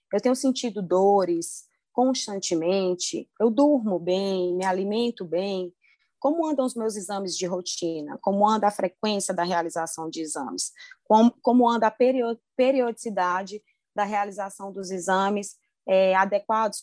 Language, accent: Portuguese, Brazilian